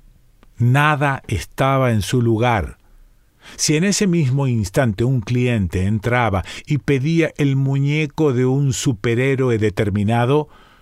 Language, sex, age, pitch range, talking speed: Spanish, male, 40-59, 105-145 Hz, 115 wpm